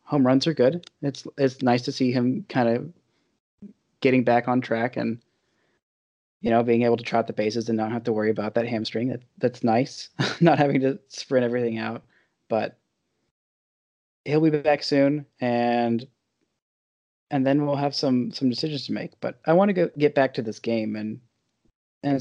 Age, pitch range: 20-39, 120-150 Hz